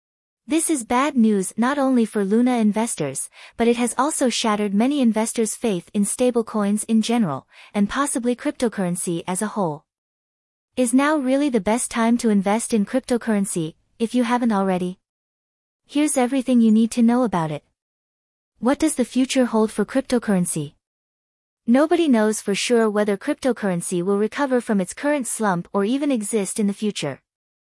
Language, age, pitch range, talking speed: English, 20-39, 195-250 Hz, 160 wpm